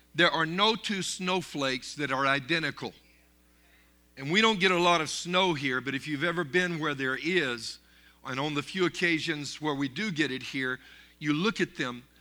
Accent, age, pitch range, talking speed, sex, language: American, 50-69, 140-195 Hz, 195 wpm, male, English